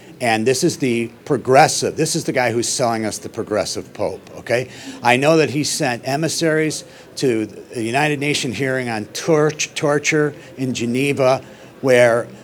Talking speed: 155 wpm